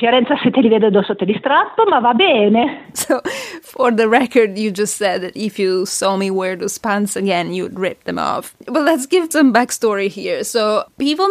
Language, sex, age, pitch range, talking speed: English, female, 20-39, 195-245 Hz, 150 wpm